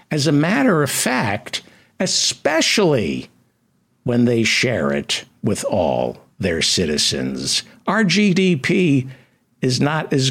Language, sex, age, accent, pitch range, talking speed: English, male, 60-79, American, 105-160 Hz, 110 wpm